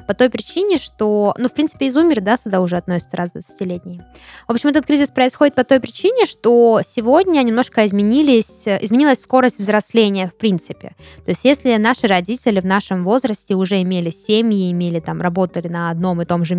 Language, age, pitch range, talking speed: Russian, 20-39, 185-235 Hz, 180 wpm